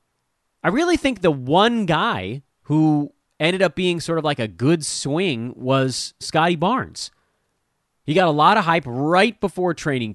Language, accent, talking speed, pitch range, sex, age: English, American, 165 wpm, 120-195 Hz, male, 30-49